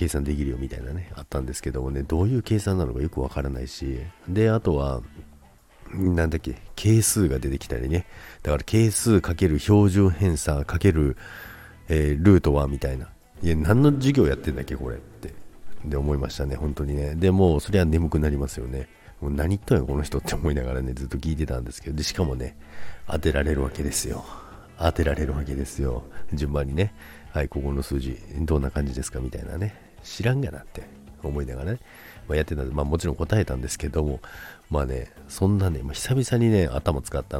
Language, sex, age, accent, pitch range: Japanese, male, 50-69, native, 70-95 Hz